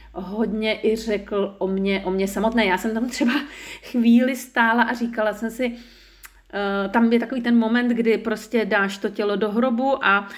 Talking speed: 185 wpm